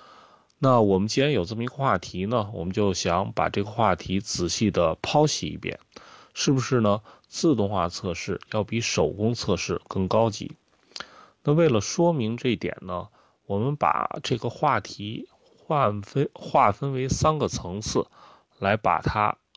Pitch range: 100-135 Hz